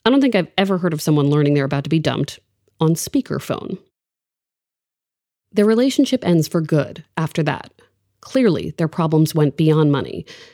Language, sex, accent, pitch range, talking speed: English, female, American, 155-235 Hz, 165 wpm